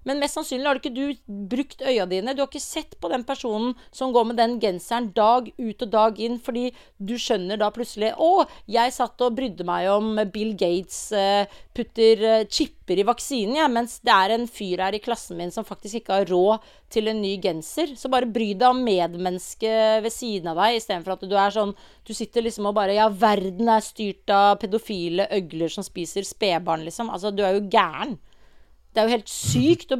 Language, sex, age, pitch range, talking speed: English, female, 40-59, 210-265 Hz, 210 wpm